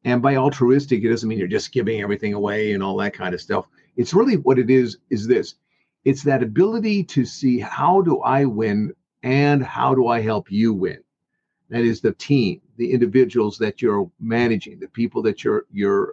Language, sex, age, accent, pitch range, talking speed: English, male, 50-69, American, 115-135 Hz, 200 wpm